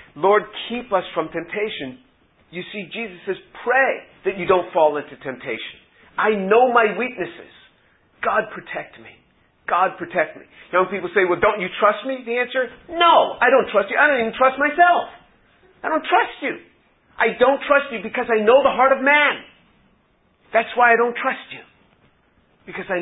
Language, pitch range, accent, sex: English, 175-265 Hz, American, male